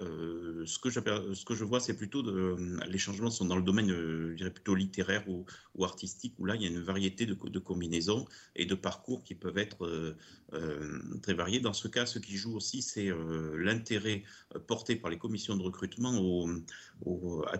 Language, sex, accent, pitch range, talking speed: French, male, French, 85-110 Hz, 215 wpm